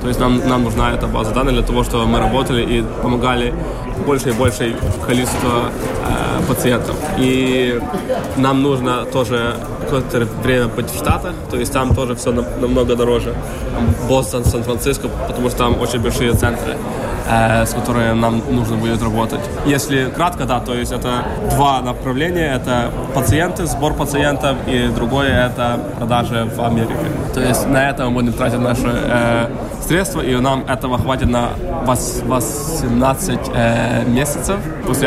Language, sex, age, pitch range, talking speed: Russian, male, 20-39, 120-135 Hz, 150 wpm